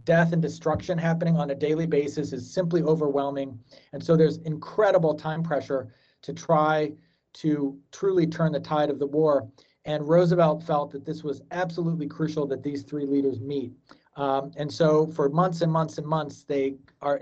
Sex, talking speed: male, 180 wpm